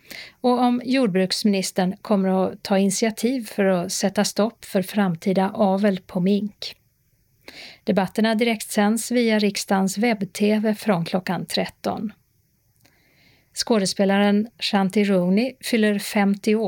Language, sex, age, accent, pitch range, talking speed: Swedish, female, 40-59, native, 190-220 Hz, 110 wpm